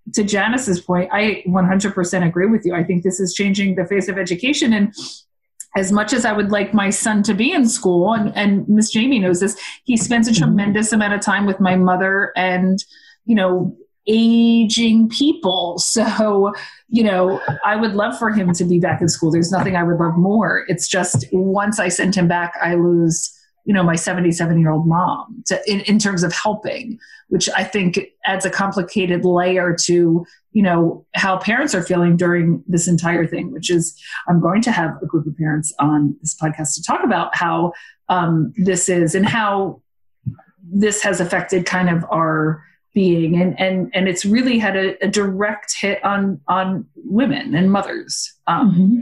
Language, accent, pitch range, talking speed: English, American, 175-210 Hz, 185 wpm